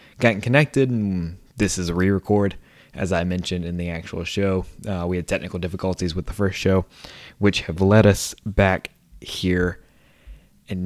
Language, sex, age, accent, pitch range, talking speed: English, male, 20-39, American, 90-110 Hz, 165 wpm